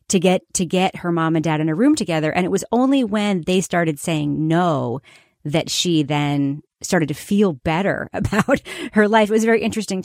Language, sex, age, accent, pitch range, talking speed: English, female, 30-49, American, 160-185 Hz, 215 wpm